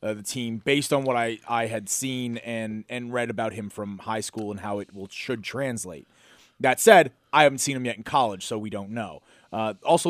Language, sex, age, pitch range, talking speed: English, male, 30-49, 105-130 Hz, 230 wpm